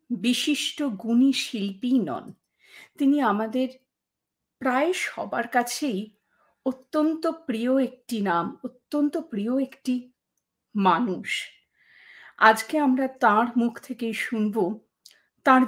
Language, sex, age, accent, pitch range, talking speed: English, female, 50-69, Indian, 210-275 Hz, 90 wpm